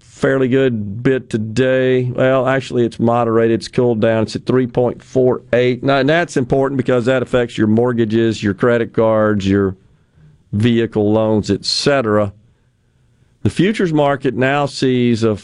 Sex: male